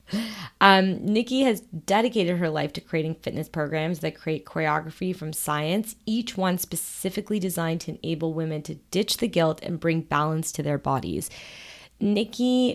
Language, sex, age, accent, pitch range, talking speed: English, female, 20-39, American, 155-195 Hz, 155 wpm